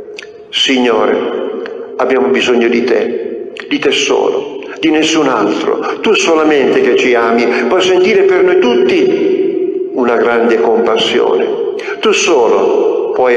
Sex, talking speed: male, 120 wpm